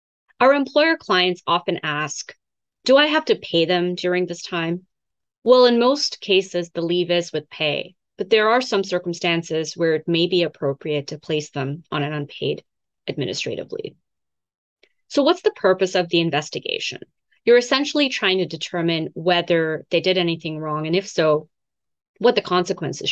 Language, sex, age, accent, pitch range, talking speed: English, female, 30-49, American, 165-240 Hz, 165 wpm